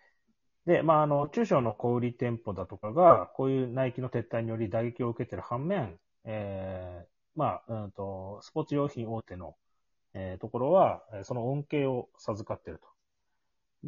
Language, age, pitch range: Japanese, 30-49, 100-135 Hz